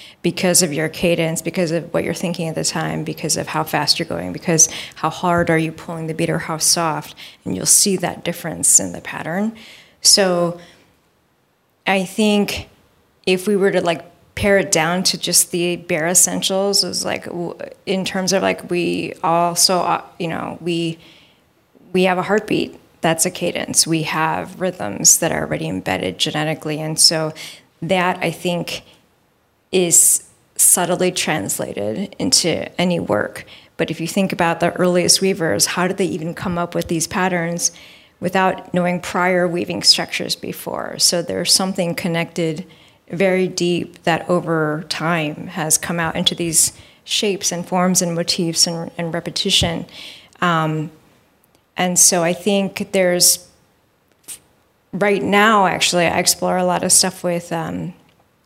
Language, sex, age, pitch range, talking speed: English, female, 20-39, 165-185 Hz, 155 wpm